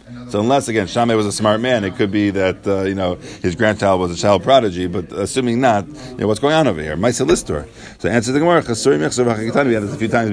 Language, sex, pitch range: English, male, 90-120 Hz